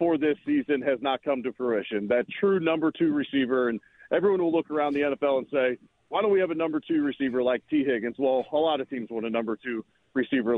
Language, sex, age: English, male, 40-59